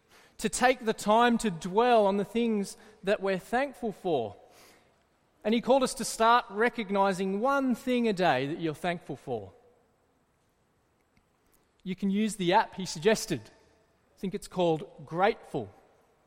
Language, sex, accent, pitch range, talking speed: English, male, Australian, 180-230 Hz, 150 wpm